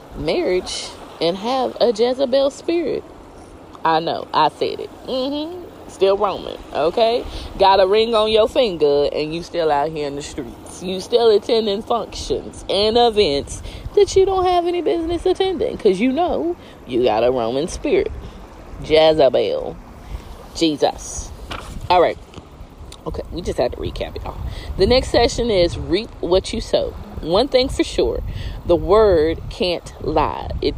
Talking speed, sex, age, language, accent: 155 wpm, female, 20-39, English, American